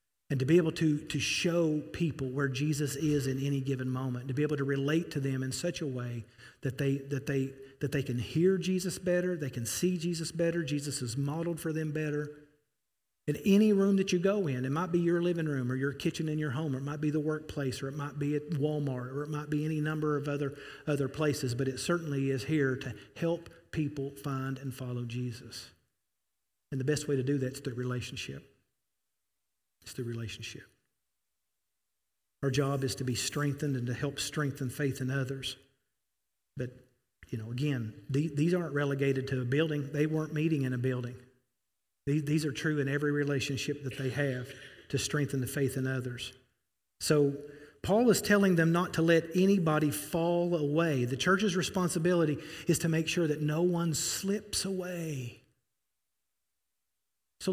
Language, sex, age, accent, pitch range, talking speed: English, male, 40-59, American, 130-155 Hz, 190 wpm